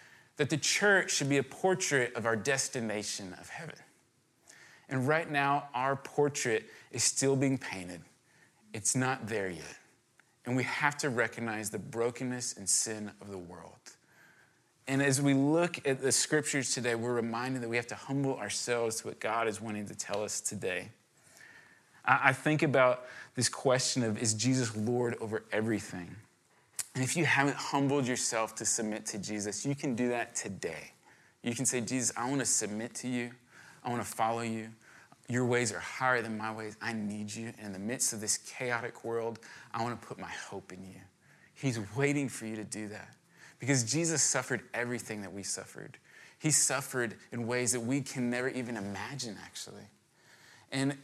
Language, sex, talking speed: English, male, 180 wpm